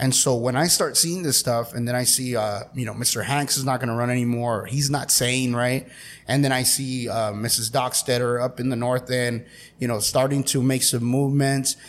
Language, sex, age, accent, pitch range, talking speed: English, male, 30-49, American, 125-160 Hz, 235 wpm